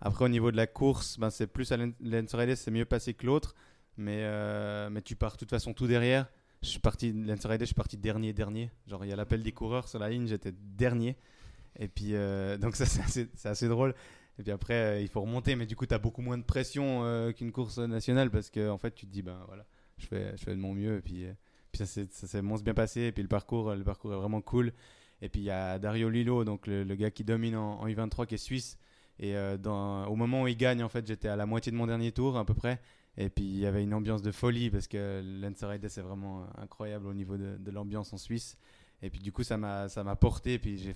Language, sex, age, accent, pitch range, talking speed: French, male, 20-39, French, 100-120 Hz, 270 wpm